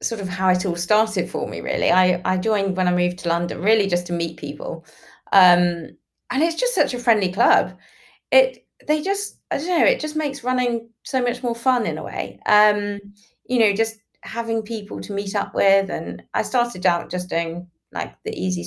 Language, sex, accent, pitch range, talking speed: English, female, British, 180-220 Hz, 210 wpm